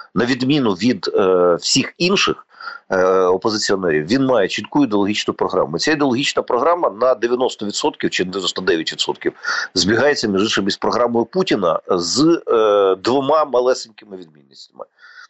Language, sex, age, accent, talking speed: Ukrainian, male, 40-59, native, 120 wpm